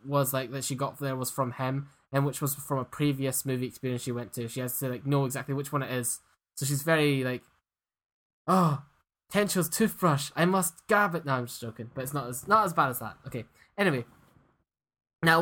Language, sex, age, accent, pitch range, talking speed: English, male, 10-29, British, 135-175 Hz, 220 wpm